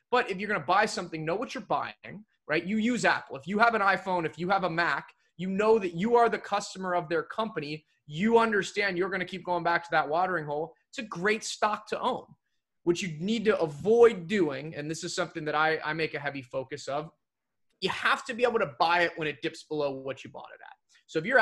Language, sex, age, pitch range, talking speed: English, male, 20-39, 150-195 Hz, 255 wpm